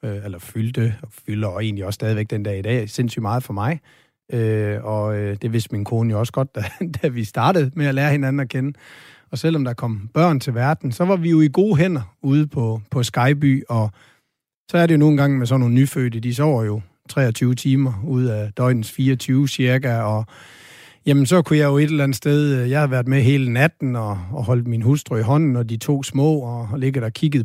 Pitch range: 115-145 Hz